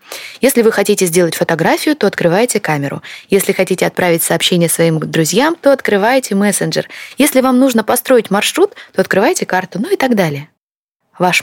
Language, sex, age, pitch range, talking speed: Russian, female, 20-39, 170-230 Hz, 160 wpm